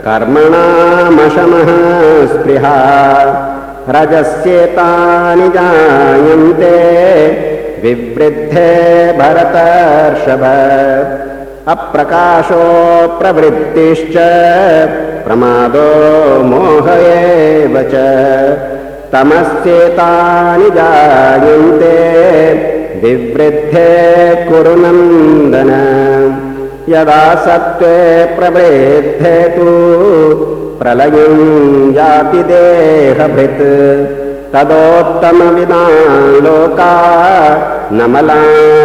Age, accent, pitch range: 50-69, native, 140-170 Hz